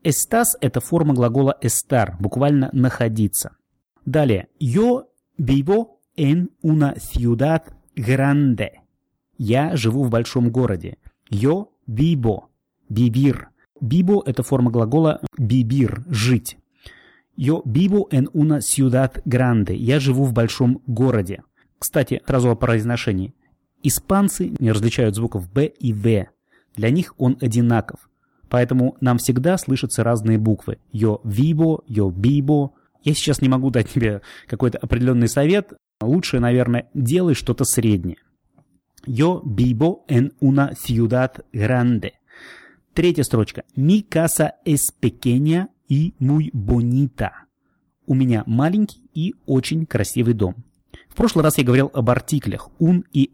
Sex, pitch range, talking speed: male, 115-145 Hz, 125 wpm